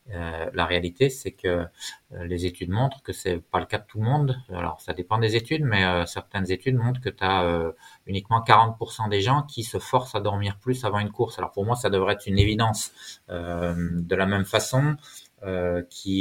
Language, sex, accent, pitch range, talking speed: French, male, French, 90-110 Hz, 220 wpm